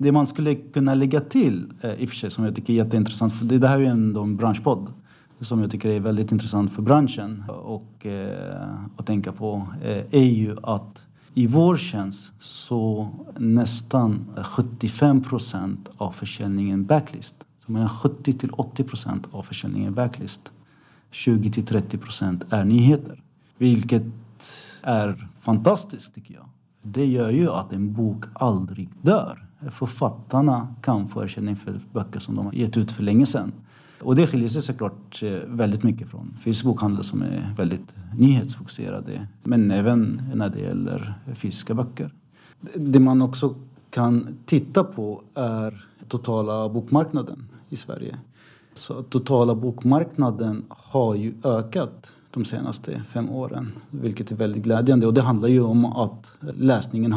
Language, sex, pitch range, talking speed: Swedish, male, 105-135 Hz, 145 wpm